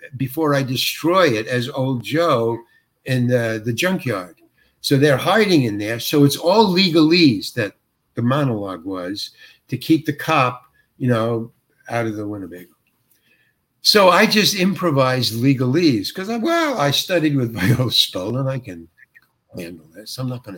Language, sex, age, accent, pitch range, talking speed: English, male, 60-79, American, 120-165 Hz, 160 wpm